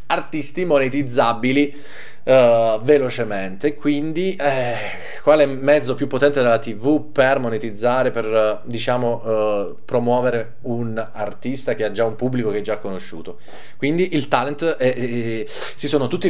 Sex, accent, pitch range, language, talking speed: male, native, 115-150 Hz, Italian, 145 wpm